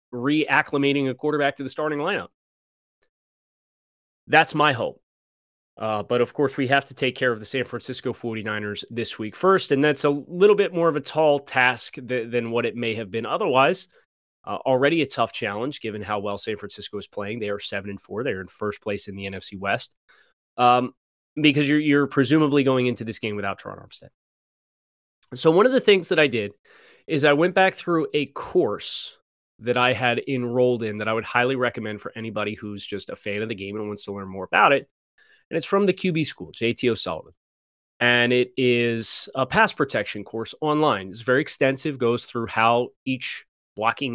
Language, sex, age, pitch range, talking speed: English, male, 20-39, 110-140 Hz, 200 wpm